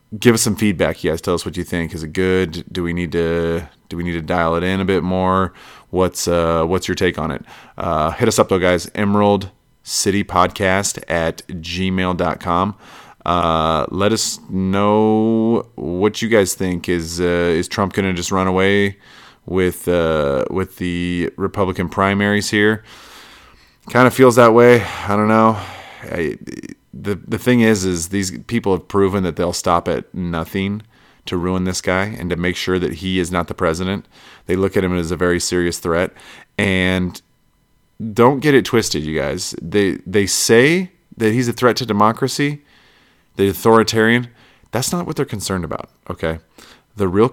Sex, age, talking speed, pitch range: male, 30-49, 180 wpm, 90-110 Hz